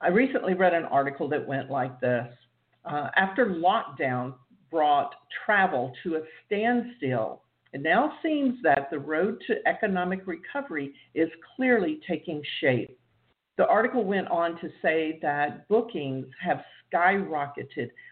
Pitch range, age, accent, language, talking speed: 145-210 Hz, 50-69, American, English, 135 wpm